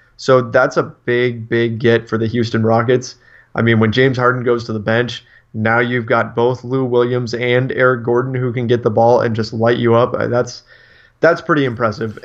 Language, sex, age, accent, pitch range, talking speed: English, male, 30-49, American, 115-130 Hz, 205 wpm